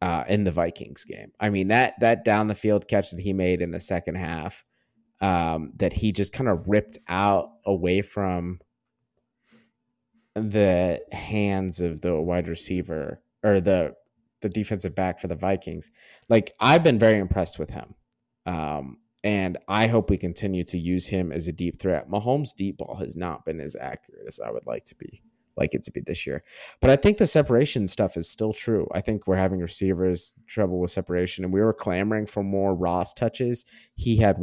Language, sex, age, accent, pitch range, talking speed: English, male, 30-49, American, 90-110 Hz, 195 wpm